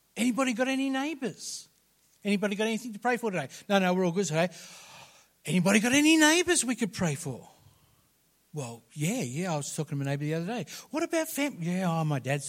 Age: 50-69